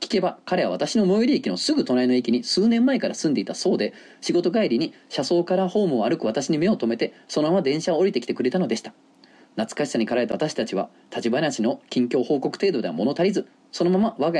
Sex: male